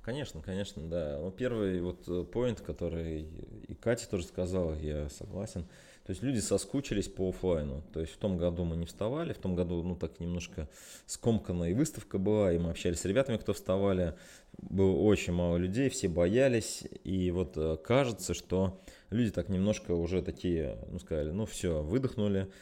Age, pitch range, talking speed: 20-39, 85-105 Hz, 165 wpm